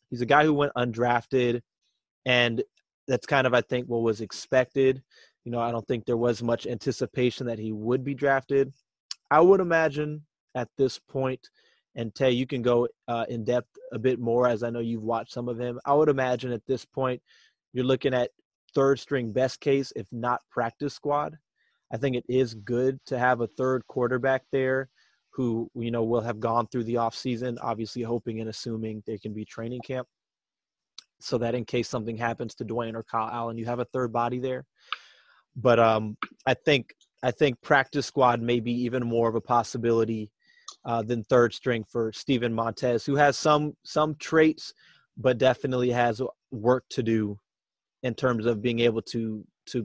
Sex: male